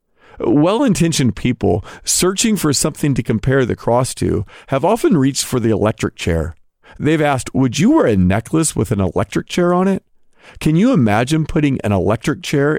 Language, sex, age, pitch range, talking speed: English, male, 40-59, 105-155 Hz, 175 wpm